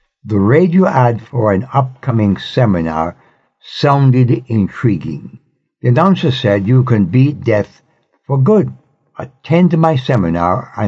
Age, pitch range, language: 60-79, 100-135 Hz, English